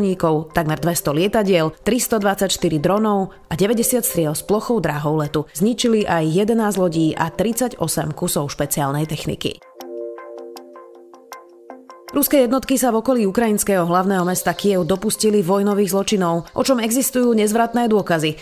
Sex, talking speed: female, 125 wpm